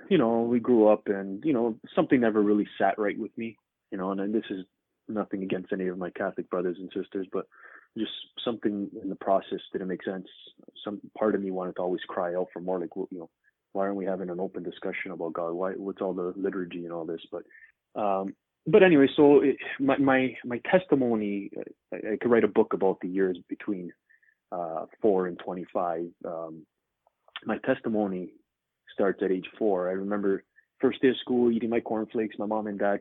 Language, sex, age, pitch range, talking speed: English, male, 20-39, 95-115 Hz, 205 wpm